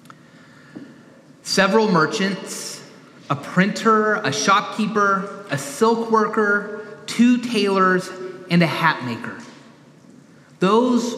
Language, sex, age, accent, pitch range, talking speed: English, male, 30-49, American, 165-210 Hz, 85 wpm